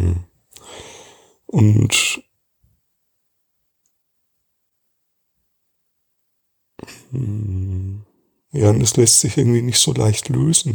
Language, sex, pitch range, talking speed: German, male, 115-145 Hz, 55 wpm